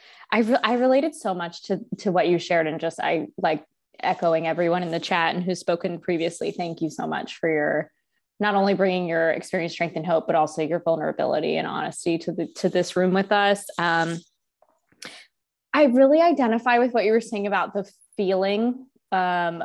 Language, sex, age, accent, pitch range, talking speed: English, female, 20-39, American, 185-235 Hz, 190 wpm